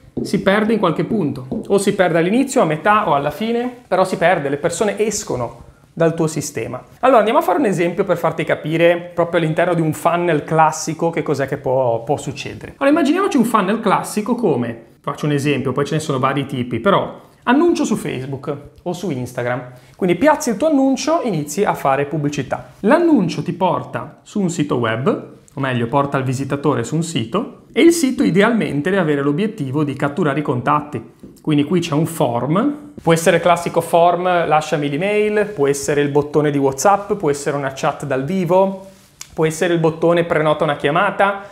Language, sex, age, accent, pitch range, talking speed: Italian, male, 30-49, native, 145-195 Hz, 190 wpm